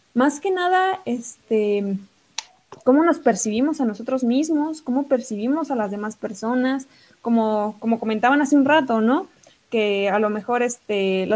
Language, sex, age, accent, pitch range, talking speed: Spanish, female, 20-39, Mexican, 220-270 Hz, 155 wpm